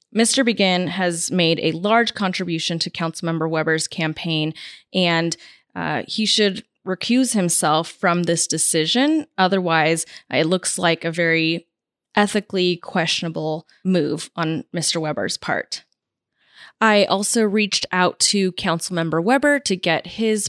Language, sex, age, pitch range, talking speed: English, female, 20-39, 170-220 Hz, 125 wpm